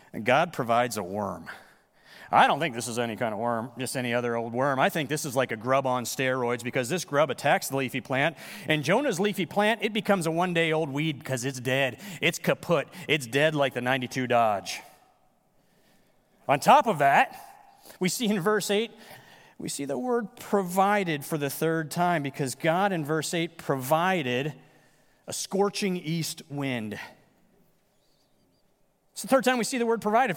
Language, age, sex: English, 30-49, male